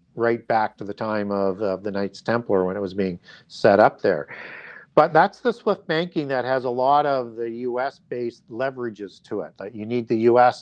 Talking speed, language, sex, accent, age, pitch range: 210 wpm, English, male, American, 50-69, 115-145 Hz